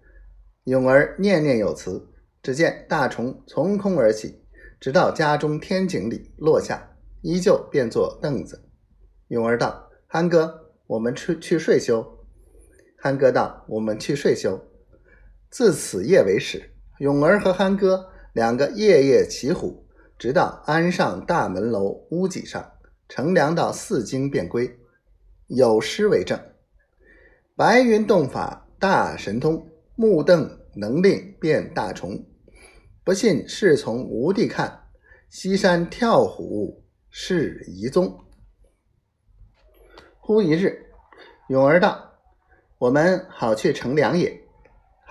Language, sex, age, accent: Chinese, male, 50-69, native